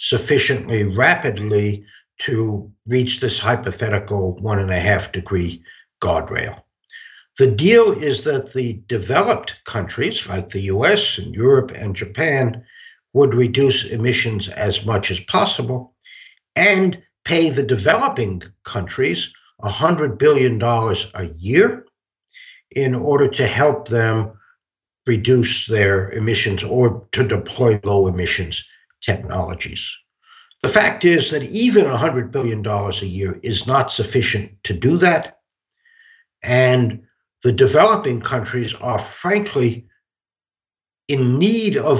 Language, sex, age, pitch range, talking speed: English, male, 60-79, 105-145 Hz, 115 wpm